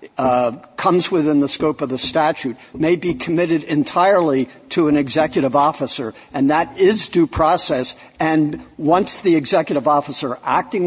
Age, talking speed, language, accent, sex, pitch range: 60-79, 150 wpm, English, American, male, 135-170 Hz